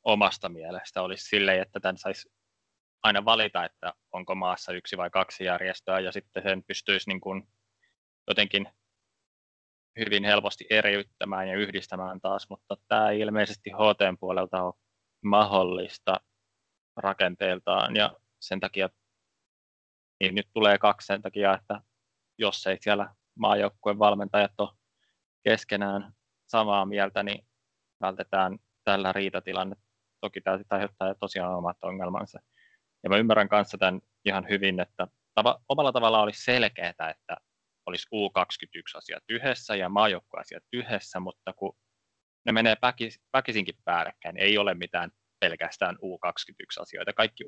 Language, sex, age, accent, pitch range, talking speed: Finnish, male, 20-39, native, 95-110 Hz, 130 wpm